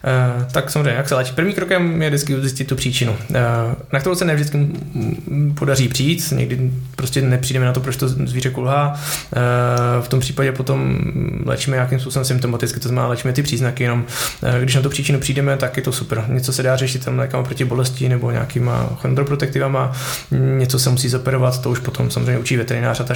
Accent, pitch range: native, 120-135 Hz